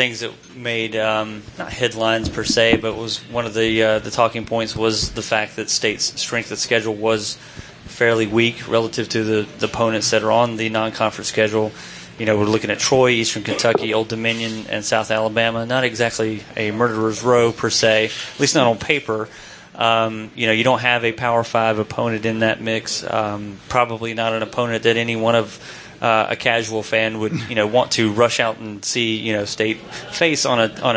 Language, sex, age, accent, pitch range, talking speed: English, male, 30-49, American, 110-120 Hz, 205 wpm